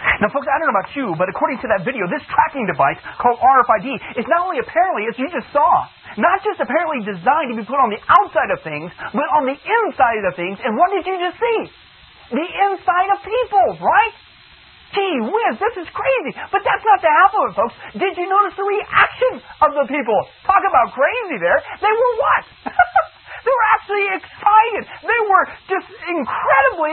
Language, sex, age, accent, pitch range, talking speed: English, male, 40-59, American, 275-400 Hz, 200 wpm